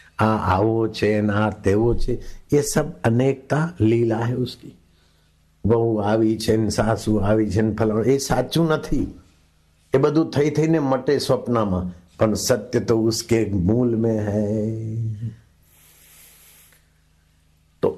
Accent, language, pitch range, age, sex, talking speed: native, Hindi, 90-145 Hz, 60-79, male, 85 wpm